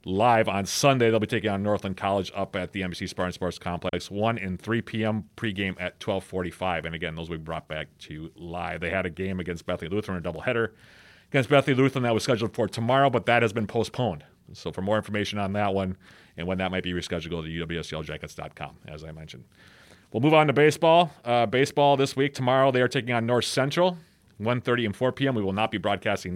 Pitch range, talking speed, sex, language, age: 90-115 Hz, 225 wpm, male, English, 40-59